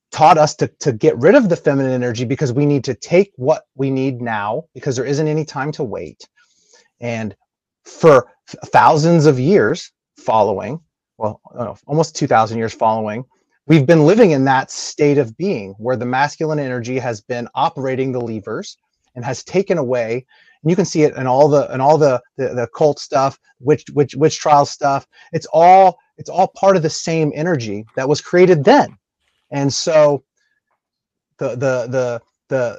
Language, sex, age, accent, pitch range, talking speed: English, male, 30-49, American, 130-160 Hz, 185 wpm